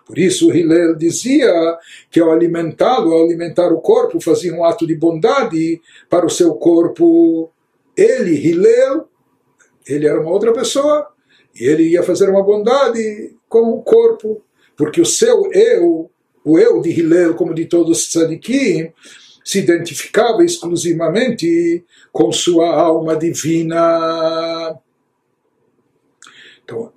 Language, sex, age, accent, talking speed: Portuguese, male, 60-79, Brazilian, 125 wpm